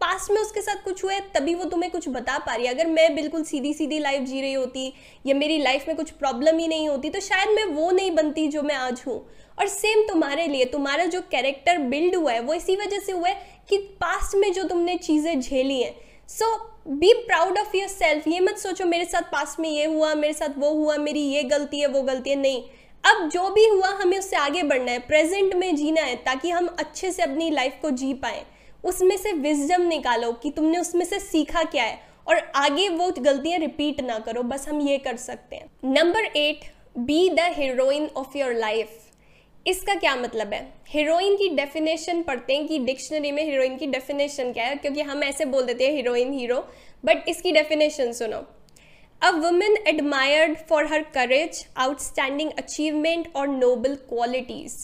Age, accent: 10-29, native